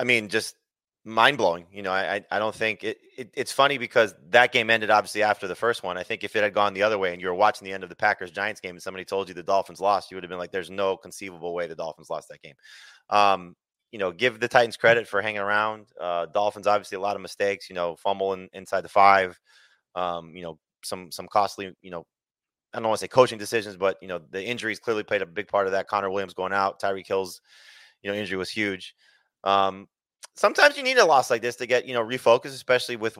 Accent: American